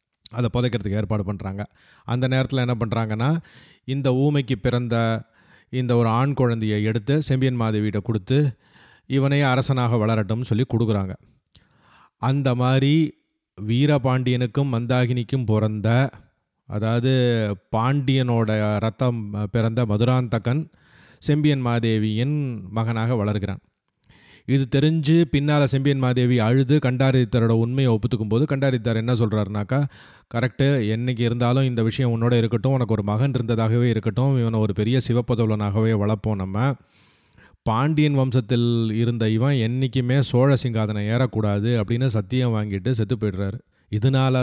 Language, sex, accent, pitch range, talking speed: Tamil, male, native, 110-130 Hz, 110 wpm